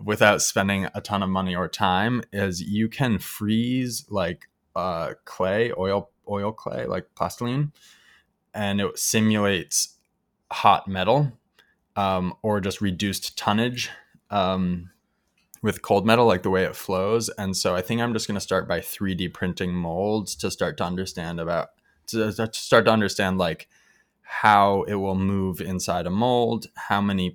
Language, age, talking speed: English, 20-39, 160 wpm